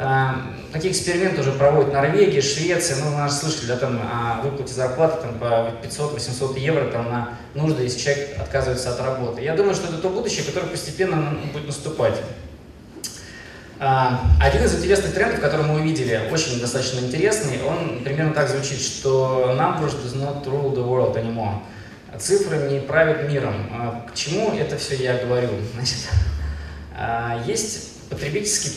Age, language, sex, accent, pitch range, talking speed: 20-39, Russian, male, native, 125-155 Hz, 160 wpm